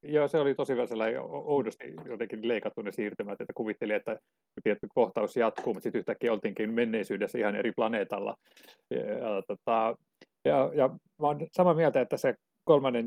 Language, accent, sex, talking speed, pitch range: Finnish, native, male, 145 wpm, 125-165 Hz